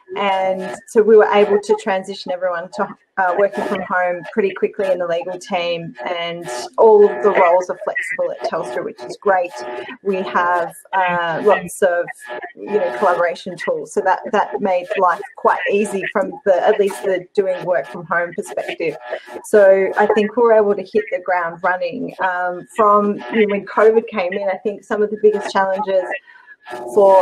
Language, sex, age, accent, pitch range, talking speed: English, female, 30-49, Australian, 185-220 Hz, 185 wpm